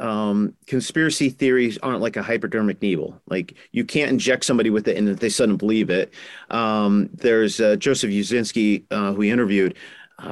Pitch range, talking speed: 105-135 Hz, 175 wpm